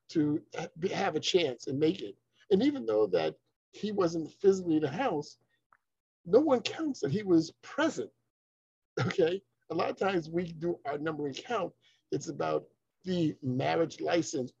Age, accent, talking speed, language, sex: 50-69, American, 160 wpm, English, male